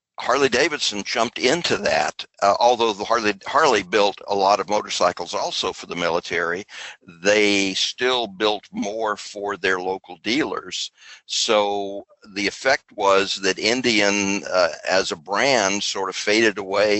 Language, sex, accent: English, male, American